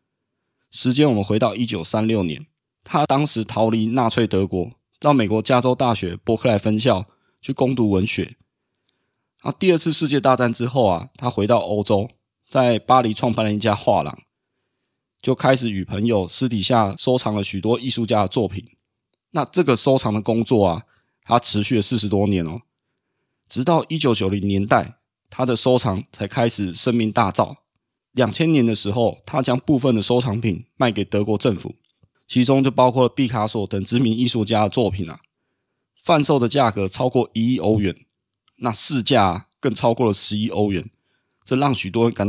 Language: Chinese